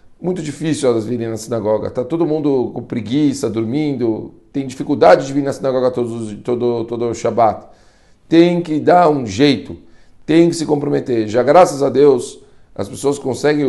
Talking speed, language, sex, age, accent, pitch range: 170 wpm, Portuguese, male, 40-59, Brazilian, 120-155 Hz